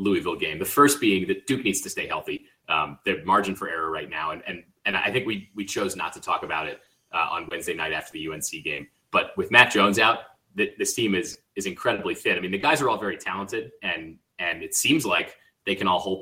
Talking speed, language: 250 wpm, English